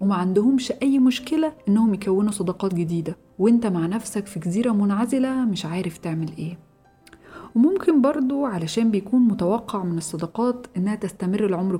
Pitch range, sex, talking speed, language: 175-230 Hz, female, 140 wpm, Arabic